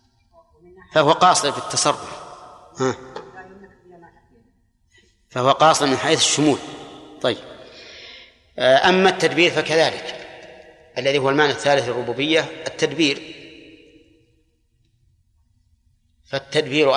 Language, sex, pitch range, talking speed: Arabic, male, 125-155 Hz, 70 wpm